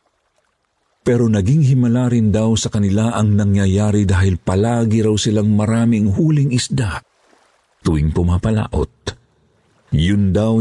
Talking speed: 115 wpm